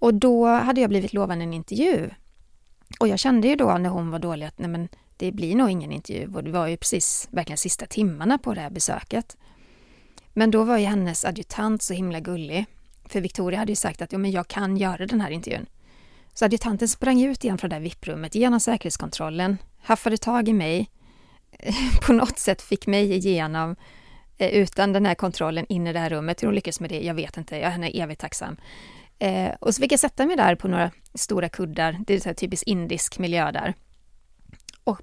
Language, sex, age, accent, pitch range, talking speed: English, female, 30-49, Swedish, 170-215 Hz, 205 wpm